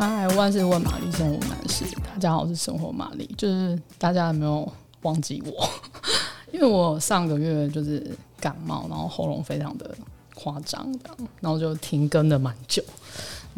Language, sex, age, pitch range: Chinese, female, 20-39, 150-195 Hz